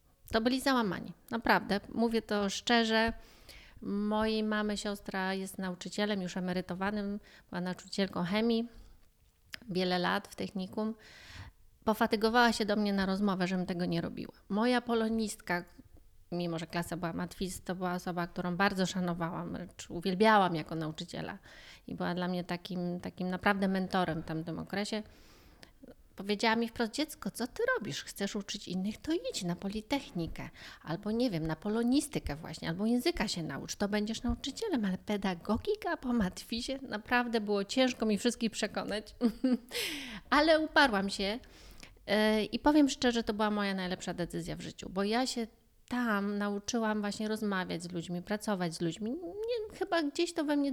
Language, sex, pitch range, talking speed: Polish, female, 185-235 Hz, 150 wpm